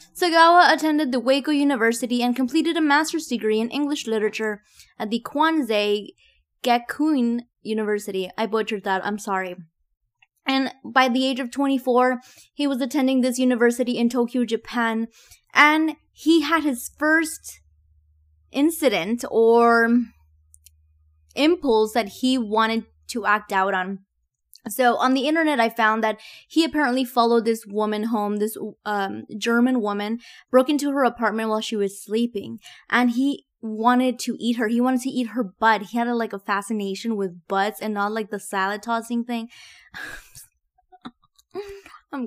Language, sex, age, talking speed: English, female, 20-39, 150 wpm